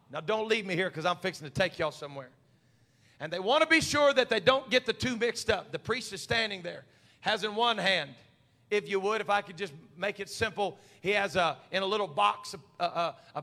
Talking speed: 245 wpm